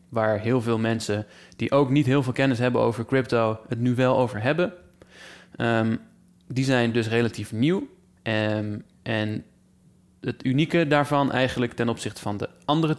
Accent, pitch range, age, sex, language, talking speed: Dutch, 110-135 Hz, 20-39, male, Dutch, 155 wpm